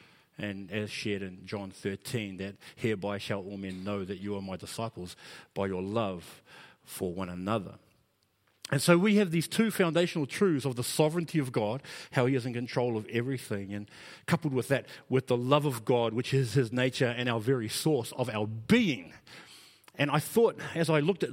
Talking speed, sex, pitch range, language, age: 195 wpm, male, 115-160 Hz, English, 40-59